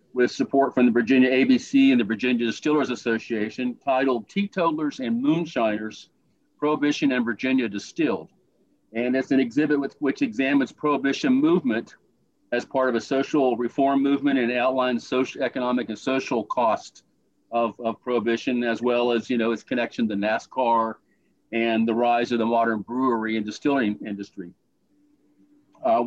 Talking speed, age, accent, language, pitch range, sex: 145 wpm, 50-69, American, English, 115-160 Hz, male